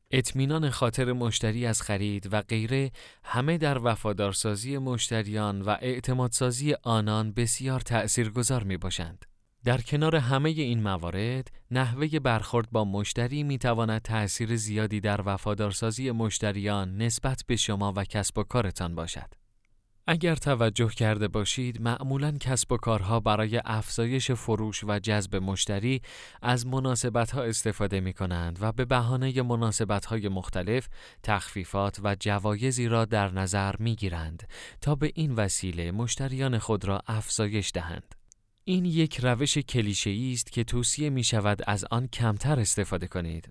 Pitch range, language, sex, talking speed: 105-130 Hz, Persian, male, 140 wpm